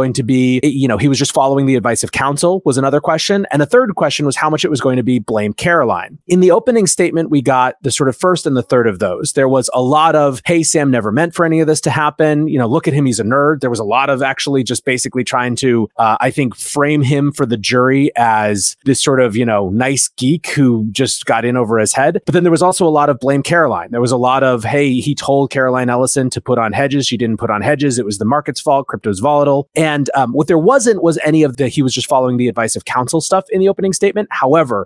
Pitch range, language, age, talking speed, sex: 120-150 Hz, English, 30-49, 275 wpm, male